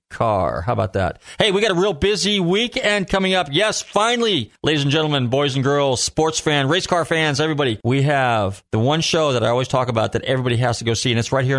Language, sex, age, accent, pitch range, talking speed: English, male, 40-59, American, 110-145 Hz, 245 wpm